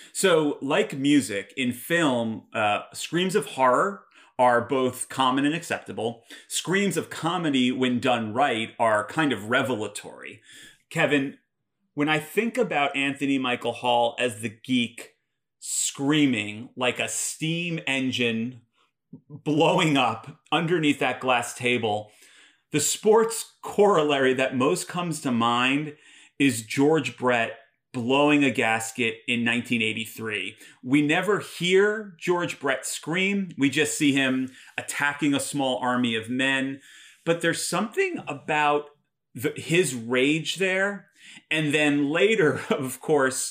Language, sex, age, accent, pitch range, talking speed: English, male, 30-49, American, 125-155 Hz, 125 wpm